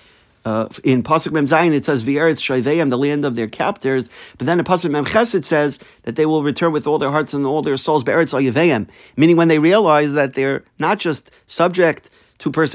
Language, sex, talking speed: English, male, 190 wpm